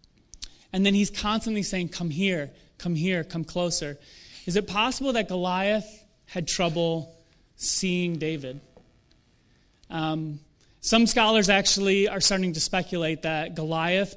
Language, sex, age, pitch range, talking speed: English, male, 30-49, 165-210 Hz, 125 wpm